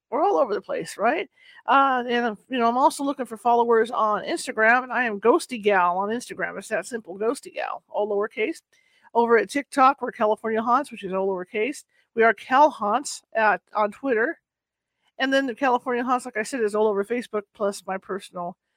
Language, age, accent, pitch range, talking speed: English, 50-69, American, 215-265 Hz, 200 wpm